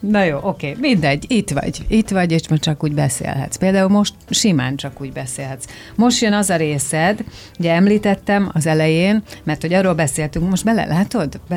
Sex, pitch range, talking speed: female, 145-185 Hz, 180 wpm